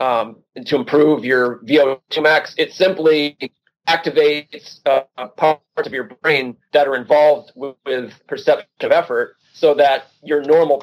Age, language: 30-49, English